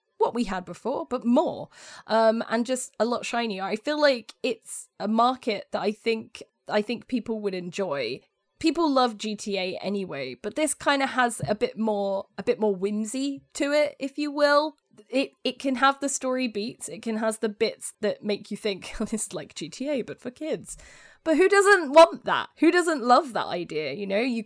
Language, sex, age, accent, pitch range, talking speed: English, female, 10-29, British, 205-260 Hz, 200 wpm